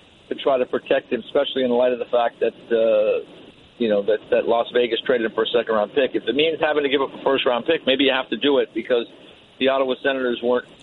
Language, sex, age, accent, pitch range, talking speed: English, male, 50-69, American, 125-155 Hz, 255 wpm